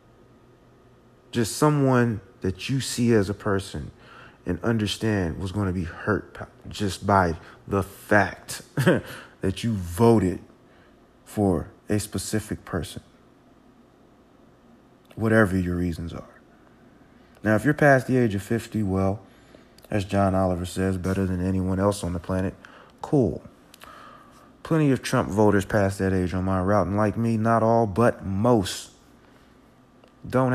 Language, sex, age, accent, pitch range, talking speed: English, male, 30-49, American, 95-115 Hz, 135 wpm